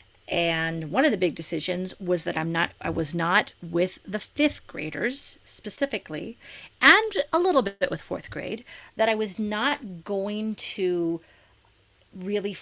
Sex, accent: female, American